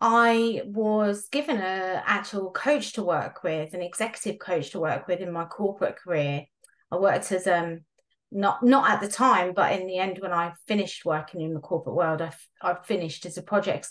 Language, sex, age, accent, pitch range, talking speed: English, female, 30-49, British, 185-230 Hz, 205 wpm